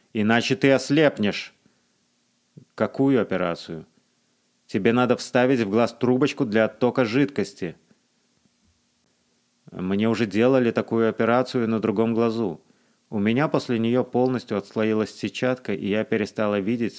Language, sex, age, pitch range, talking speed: Russian, male, 30-49, 110-130 Hz, 115 wpm